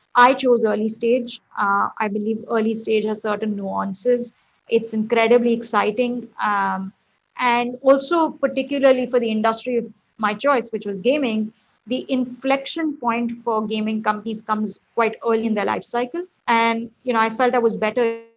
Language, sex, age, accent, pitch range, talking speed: English, female, 30-49, Indian, 215-245 Hz, 155 wpm